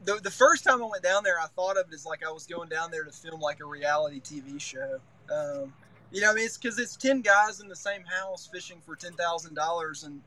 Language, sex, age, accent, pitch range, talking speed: English, male, 20-39, American, 150-195 Hz, 255 wpm